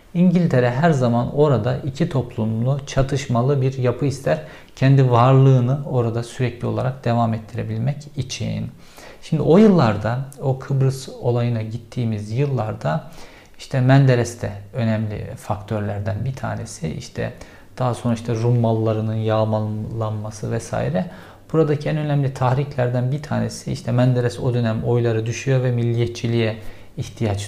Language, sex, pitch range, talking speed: Turkish, male, 110-135 Hz, 120 wpm